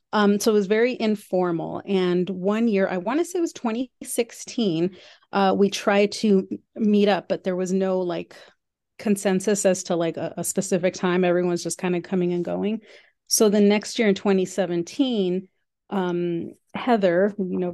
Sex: female